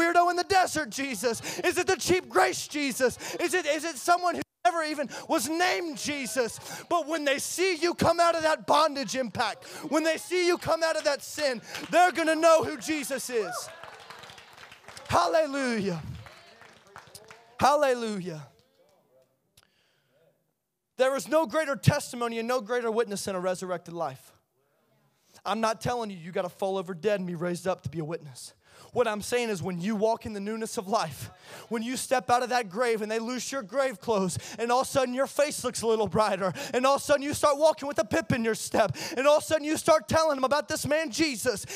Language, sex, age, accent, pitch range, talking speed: English, male, 20-39, American, 220-315 Hz, 205 wpm